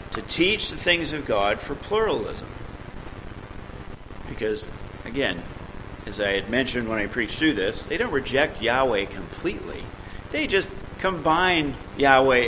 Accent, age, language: American, 40-59, English